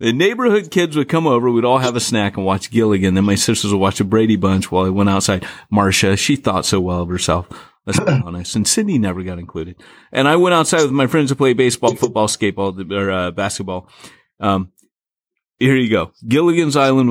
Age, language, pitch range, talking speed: 30-49, English, 95-125 Hz, 220 wpm